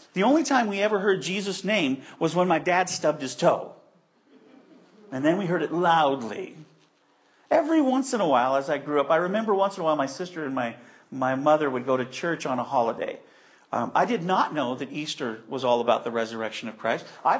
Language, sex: English, male